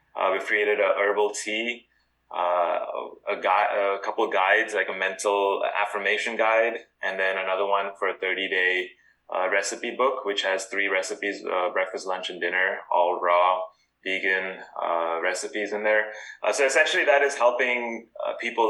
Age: 20-39